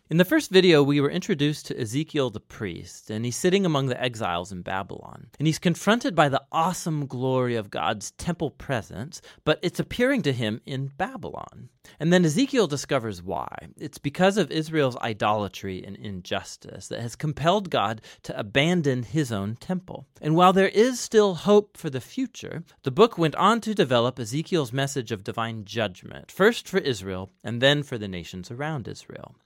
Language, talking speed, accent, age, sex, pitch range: English, 180 wpm, American, 30-49, male, 115-170 Hz